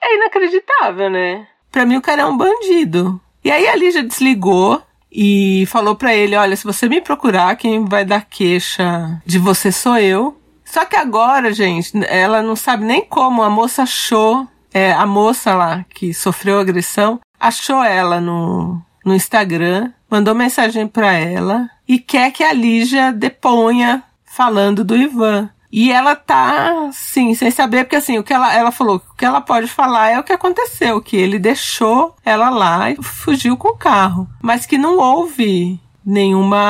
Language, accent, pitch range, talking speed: Portuguese, Brazilian, 200-260 Hz, 170 wpm